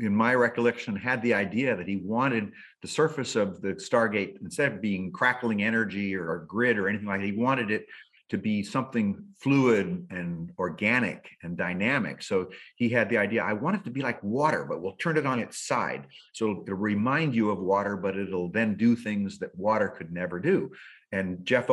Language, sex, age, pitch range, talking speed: English, male, 50-69, 95-120 Hz, 205 wpm